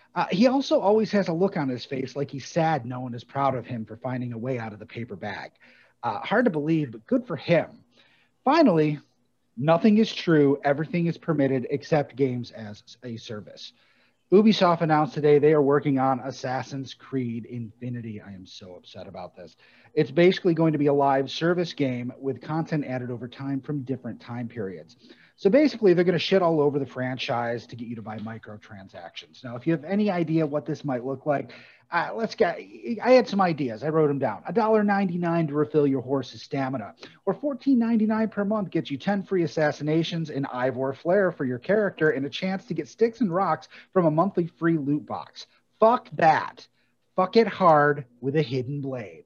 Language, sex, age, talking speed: English, male, 30-49, 200 wpm